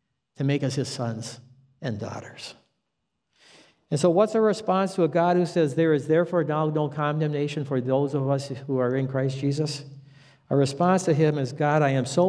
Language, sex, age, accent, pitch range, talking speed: English, male, 60-79, American, 120-140 Hz, 200 wpm